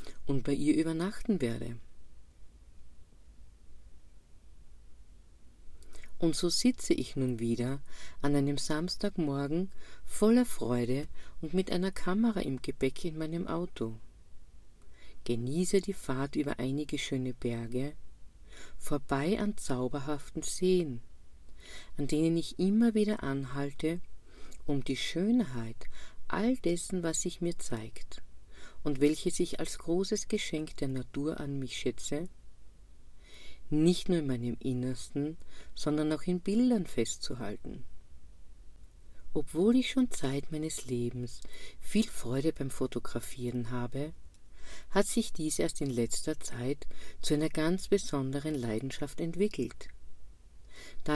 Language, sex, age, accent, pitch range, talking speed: German, female, 50-69, German, 115-170 Hz, 115 wpm